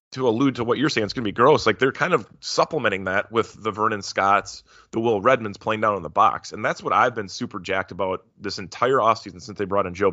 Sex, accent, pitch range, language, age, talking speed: male, American, 100-125 Hz, English, 20-39, 265 wpm